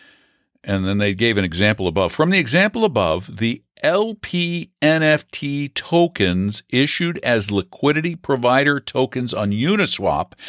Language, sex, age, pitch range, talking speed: English, male, 60-79, 125-175 Hz, 125 wpm